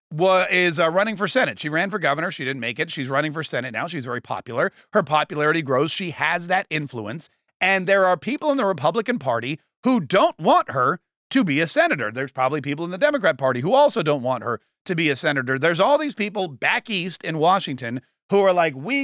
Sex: male